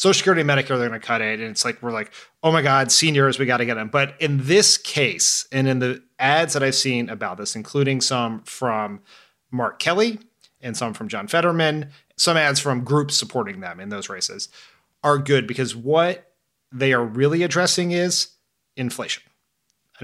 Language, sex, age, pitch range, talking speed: English, male, 30-49, 125-170 Hz, 200 wpm